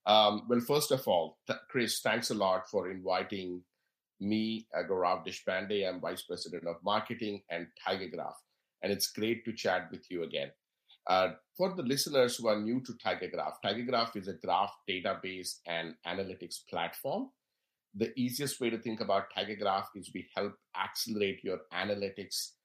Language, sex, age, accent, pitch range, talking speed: English, male, 50-69, Indian, 95-120 Hz, 165 wpm